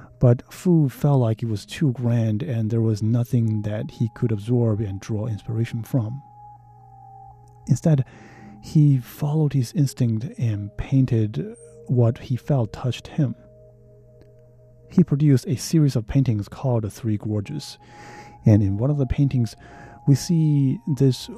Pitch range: 110-130 Hz